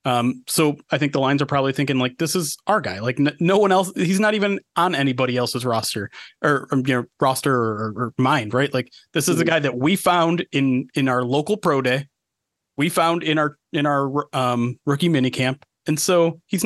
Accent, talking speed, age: American, 220 wpm, 30-49